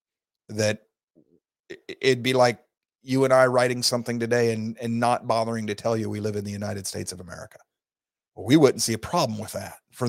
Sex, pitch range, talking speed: male, 110-130 Hz, 195 wpm